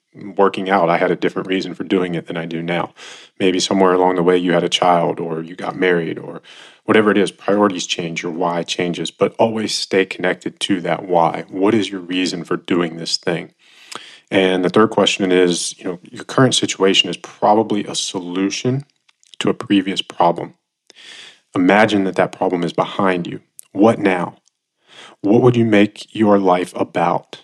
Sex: male